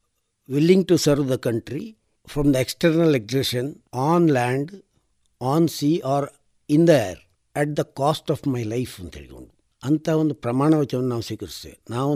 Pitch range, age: 120-160 Hz, 60-79